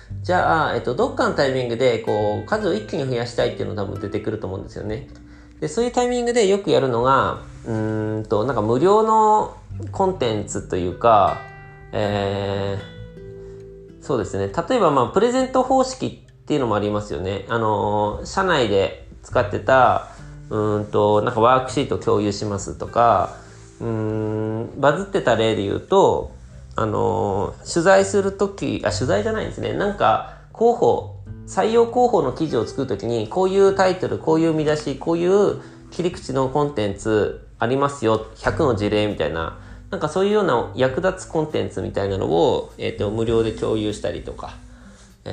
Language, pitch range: Japanese, 105-170 Hz